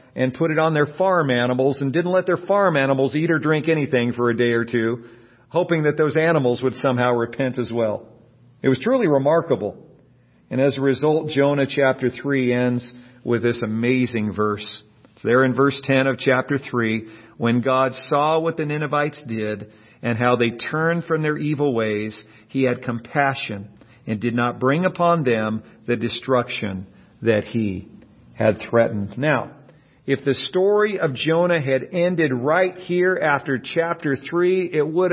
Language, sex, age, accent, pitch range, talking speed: English, male, 50-69, American, 130-185 Hz, 170 wpm